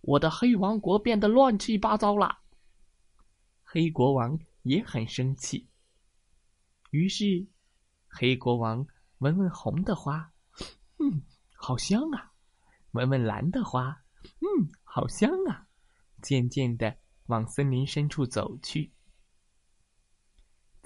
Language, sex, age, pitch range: Chinese, male, 20-39, 125-200 Hz